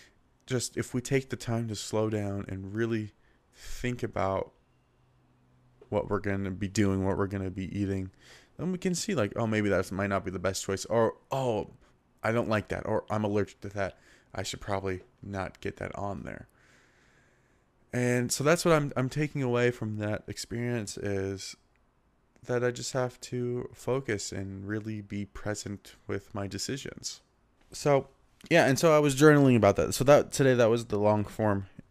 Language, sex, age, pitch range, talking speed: English, male, 20-39, 100-125 Hz, 190 wpm